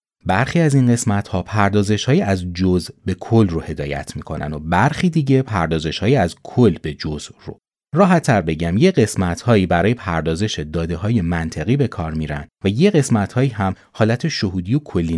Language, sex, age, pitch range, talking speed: Persian, male, 30-49, 85-120 Hz, 170 wpm